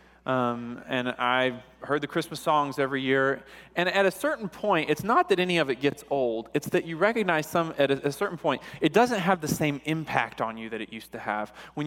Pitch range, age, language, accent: 130-175 Hz, 20-39, English, American